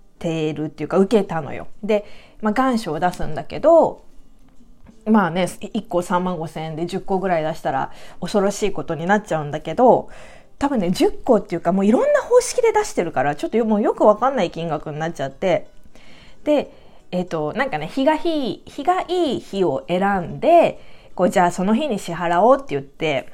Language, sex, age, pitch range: Japanese, female, 20-39, 175-270 Hz